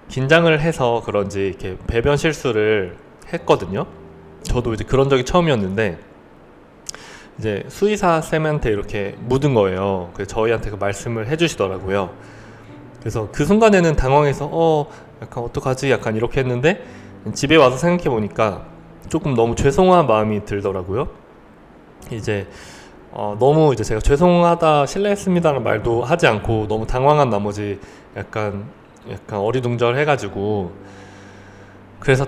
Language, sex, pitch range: Korean, male, 100-145 Hz